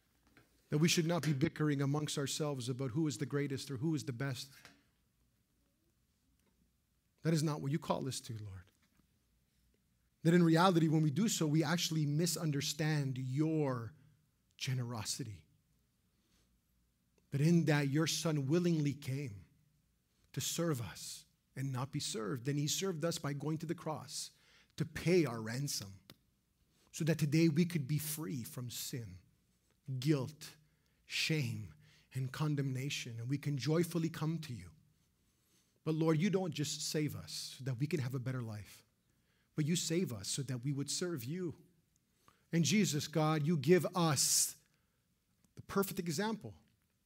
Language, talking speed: English, 155 wpm